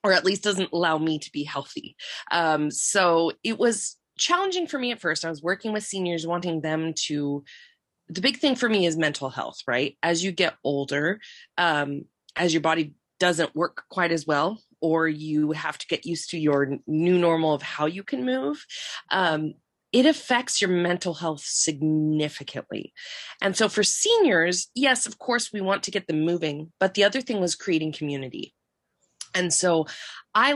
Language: English